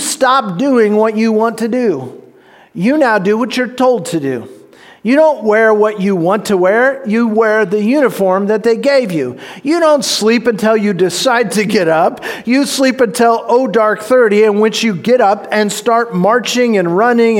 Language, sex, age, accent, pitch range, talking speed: English, male, 40-59, American, 205-245 Hz, 195 wpm